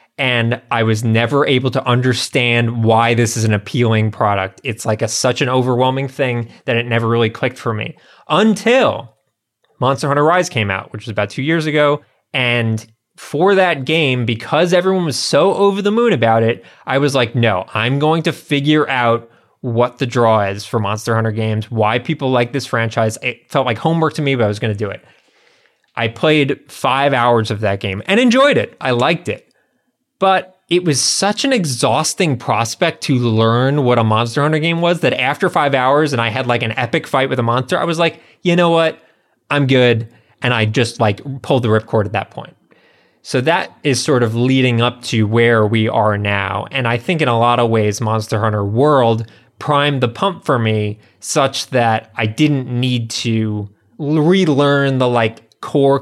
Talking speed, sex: 200 wpm, male